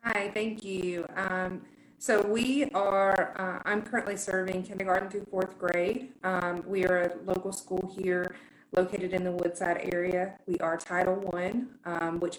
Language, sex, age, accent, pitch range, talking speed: English, female, 20-39, American, 170-185 Hz, 155 wpm